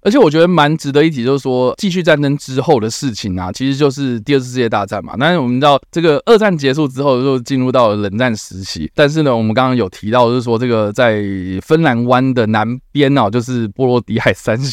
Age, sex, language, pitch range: 20-39, male, Chinese, 105-135 Hz